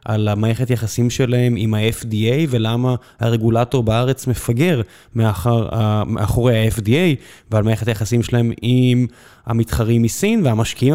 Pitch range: 115-140 Hz